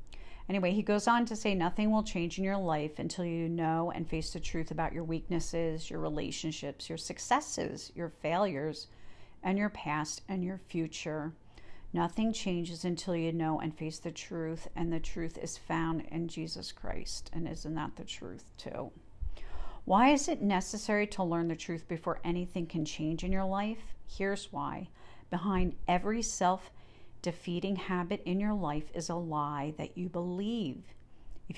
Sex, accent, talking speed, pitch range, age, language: female, American, 170 wpm, 155-185 Hz, 50-69, English